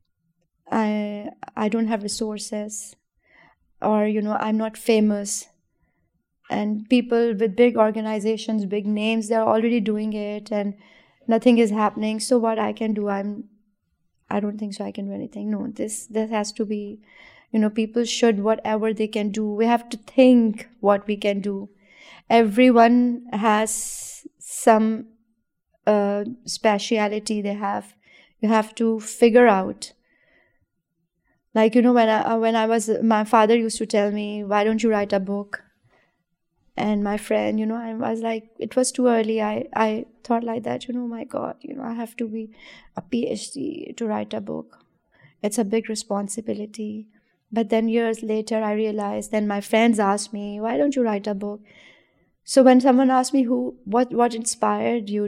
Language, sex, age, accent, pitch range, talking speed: English, female, 20-39, Indian, 210-230 Hz, 170 wpm